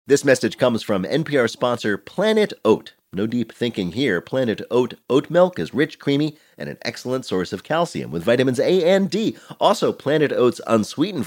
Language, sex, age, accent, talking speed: English, male, 40-59, American, 180 wpm